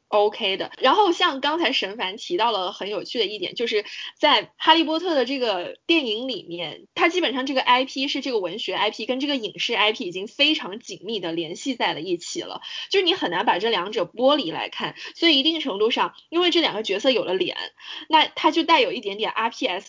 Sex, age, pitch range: female, 20-39, 225-350 Hz